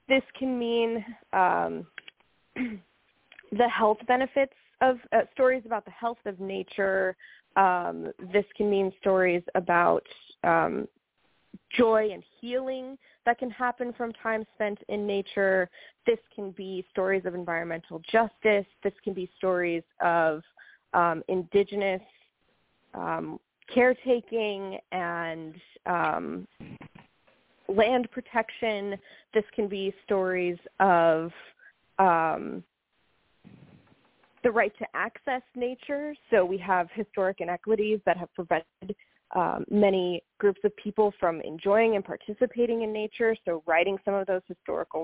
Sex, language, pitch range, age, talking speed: female, English, 180-225 Hz, 20-39, 120 wpm